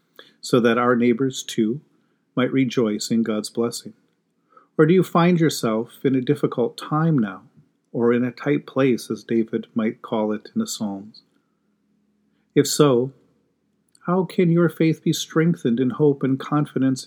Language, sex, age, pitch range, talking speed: English, male, 40-59, 120-150 Hz, 160 wpm